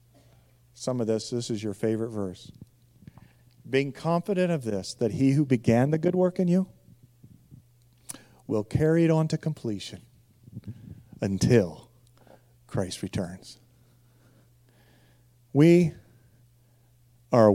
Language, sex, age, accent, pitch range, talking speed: English, male, 40-59, American, 120-135 Hz, 115 wpm